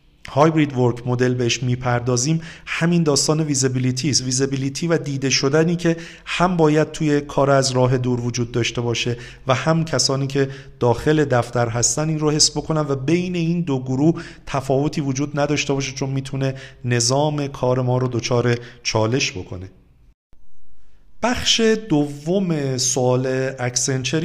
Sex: male